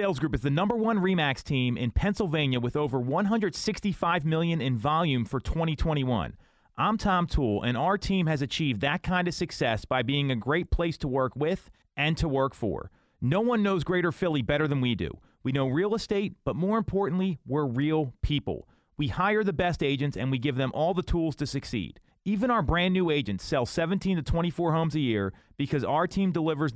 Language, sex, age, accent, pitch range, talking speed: English, male, 30-49, American, 135-180 Hz, 205 wpm